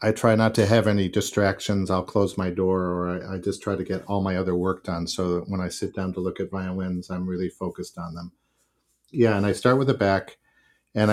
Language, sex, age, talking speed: English, male, 50-69, 255 wpm